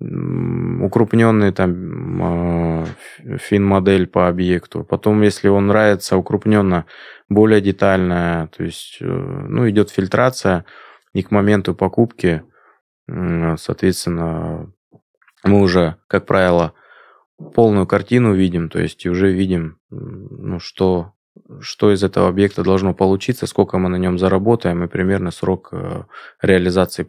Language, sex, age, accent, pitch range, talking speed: Russian, male, 20-39, native, 85-100 Hz, 110 wpm